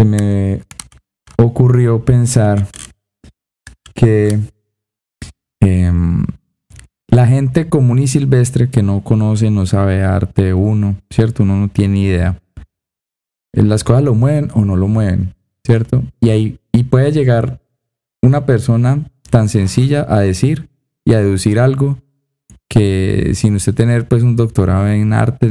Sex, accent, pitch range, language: male, Colombian, 100-120 Hz, Spanish